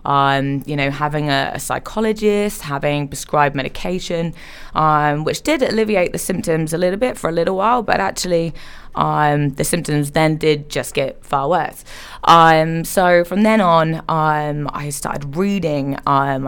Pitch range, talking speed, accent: 145-180 Hz, 160 wpm, British